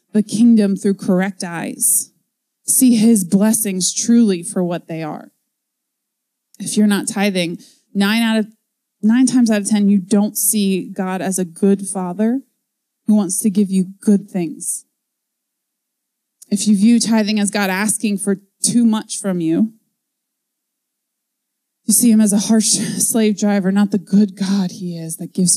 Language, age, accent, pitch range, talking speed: English, 20-39, American, 190-235 Hz, 160 wpm